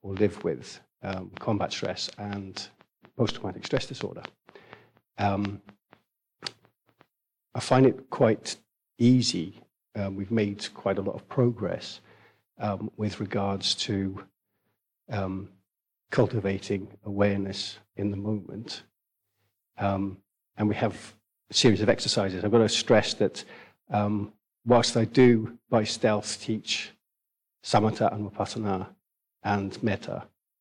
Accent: British